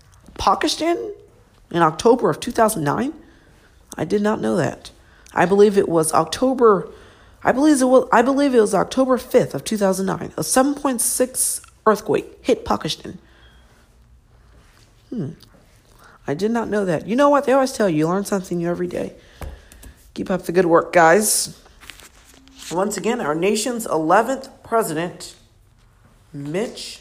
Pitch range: 155-245 Hz